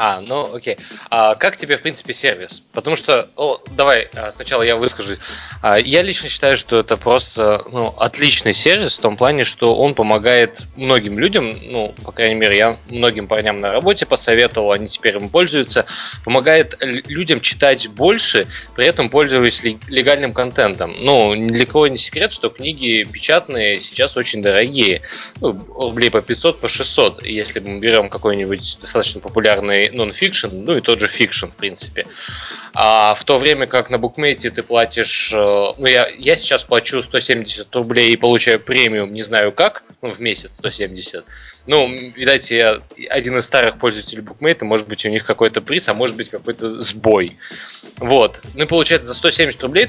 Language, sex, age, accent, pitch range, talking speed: Russian, male, 20-39, native, 110-130 Hz, 170 wpm